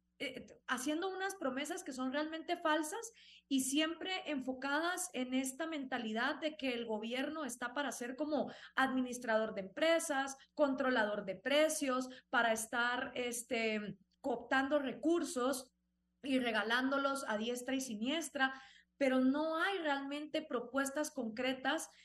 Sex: female